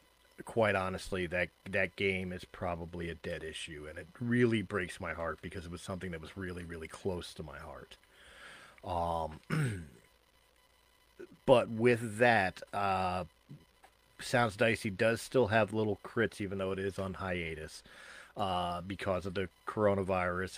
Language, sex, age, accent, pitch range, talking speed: English, male, 40-59, American, 85-105 Hz, 150 wpm